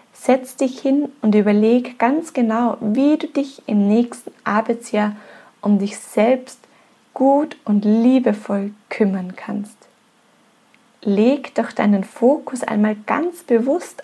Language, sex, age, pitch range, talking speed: German, female, 20-39, 215-255 Hz, 120 wpm